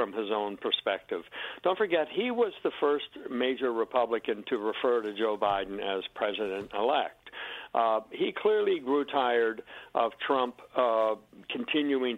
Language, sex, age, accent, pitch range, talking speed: English, male, 60-79, American, 115-165 Hz, 145 wpm